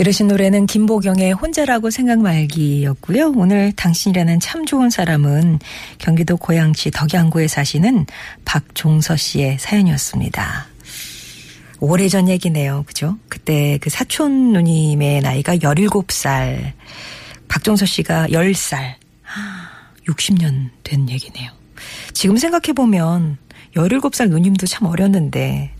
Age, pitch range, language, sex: 40-59, 145-195 Hz, Korean, female